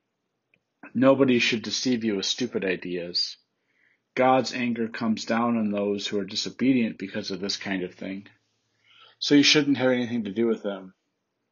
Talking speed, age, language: 160 wpm, 40-59, English